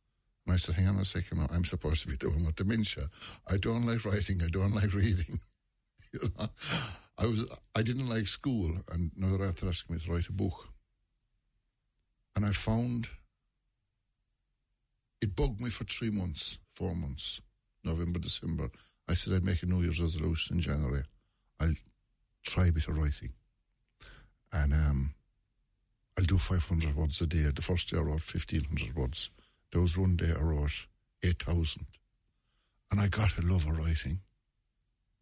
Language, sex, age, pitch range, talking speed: English, male, 60-79, 85-110 Hz, 165 wpm